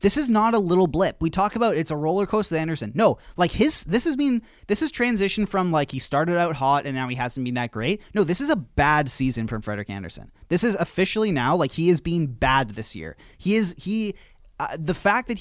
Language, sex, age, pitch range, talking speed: English, male, 20-39, 130-185 Hz, 245 wpm